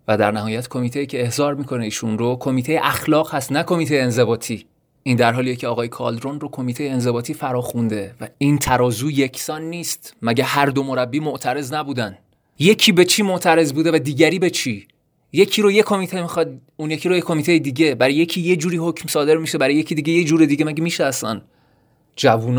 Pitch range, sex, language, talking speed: 120-155 Hz, male, Persian, 195 wpm